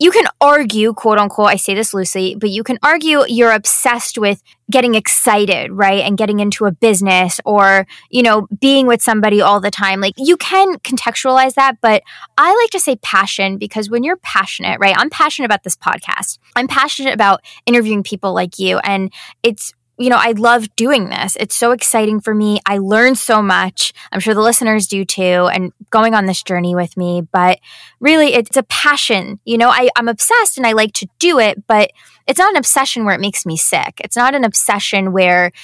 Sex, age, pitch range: female, 20-39, 195-245 Hz